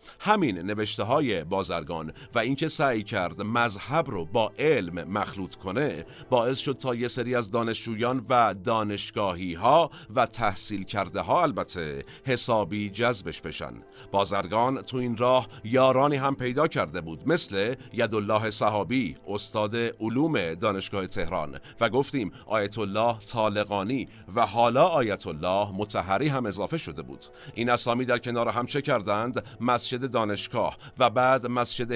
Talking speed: 135 wpm